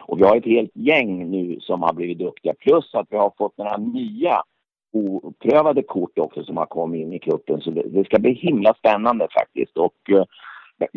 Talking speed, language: 195 wpm, Swedish